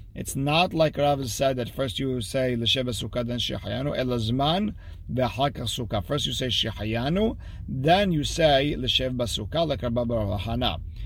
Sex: male